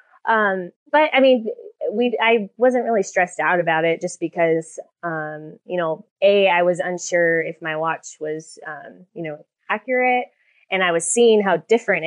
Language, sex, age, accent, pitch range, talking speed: English, female, 20-39, American, 160-215 Hz, 175 wpm